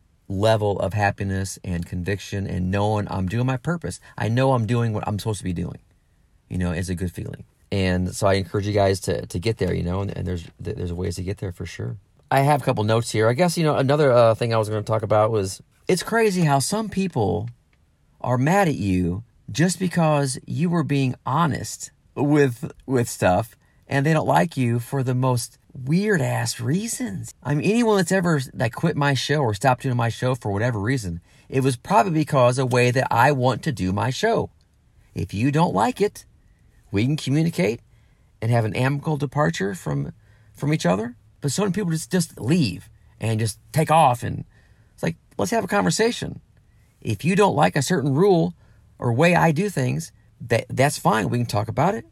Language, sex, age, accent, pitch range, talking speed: English, male, 40-59, American, 105-150 Hz, 210 wpm